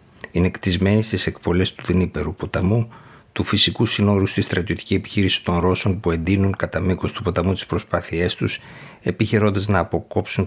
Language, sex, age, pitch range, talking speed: Greek, male, 50-69, 85-105 Hz, 155 wpm